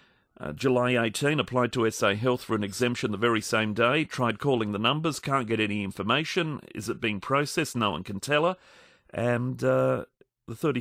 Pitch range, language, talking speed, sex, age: 100-125 Hz, English, 190 wpm, male, 40-59